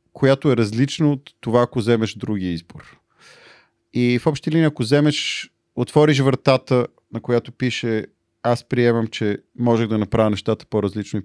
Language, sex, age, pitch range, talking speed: Bulgarian, male, 40-59, 105-135 Hz, 155 wpm